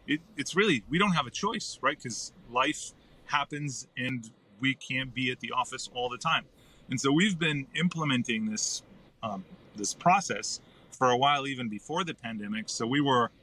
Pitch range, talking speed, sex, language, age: 115-145 Hz, 185 wpm, male, English, 30-49